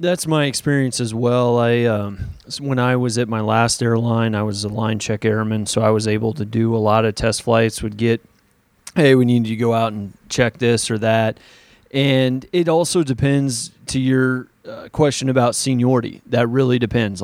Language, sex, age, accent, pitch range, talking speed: English, male, 30-49, American, 110-130 Hz, 200 wpm